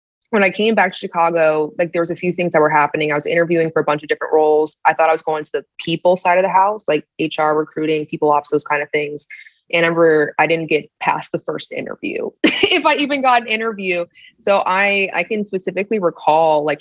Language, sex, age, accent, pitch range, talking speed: English, female, 20-39, American, 150-175 Hz, 245 wpm